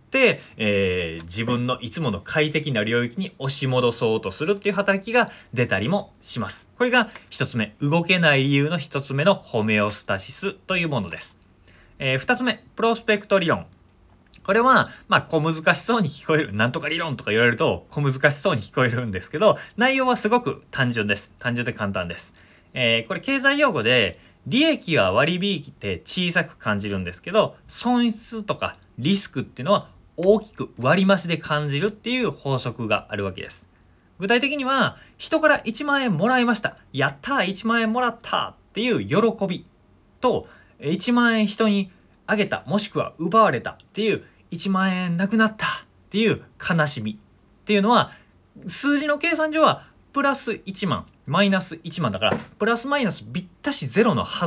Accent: native